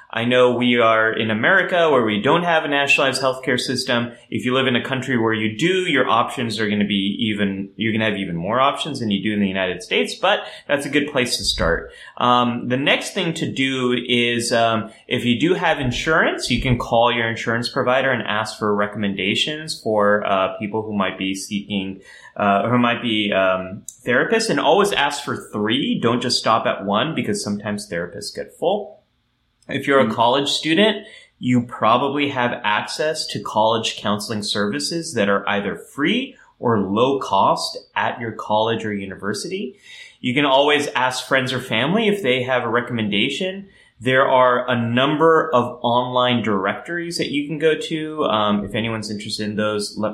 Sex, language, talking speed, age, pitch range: male, English, 190 wpm, 30-49, 105-135 Hz